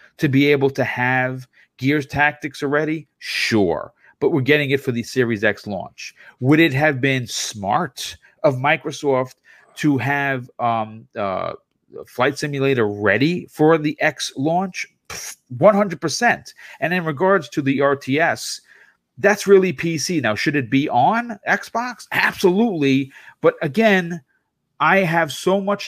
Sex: male